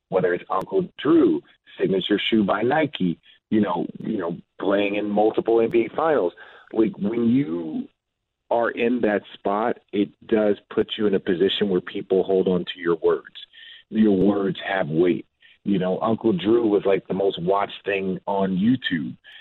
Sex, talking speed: male, 165 wpm